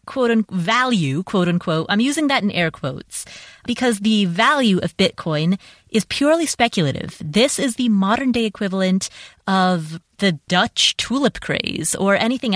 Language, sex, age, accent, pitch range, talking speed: English, female, 30-49, American, 170-225 Hz, 145 wpm